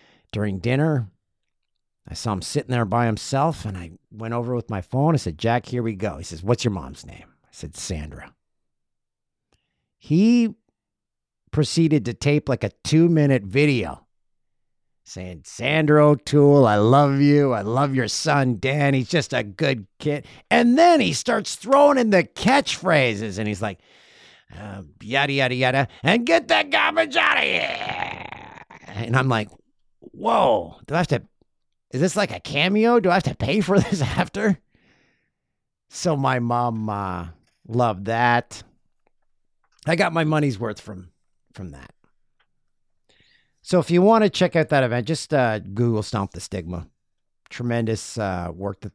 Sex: male